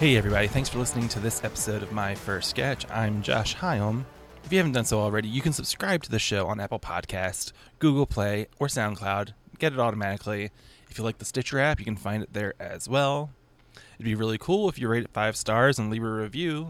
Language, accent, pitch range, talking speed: English, American, 105-140 Hz, 230 wpm